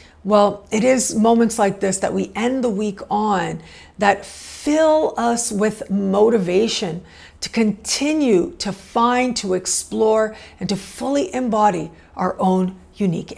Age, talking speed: 50-69, 135 wpm